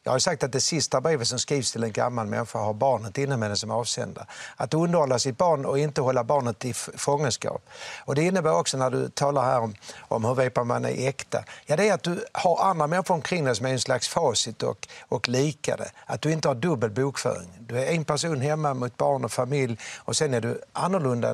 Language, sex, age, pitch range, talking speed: English, male, 60-79, 120-155 Hz, 235 wpm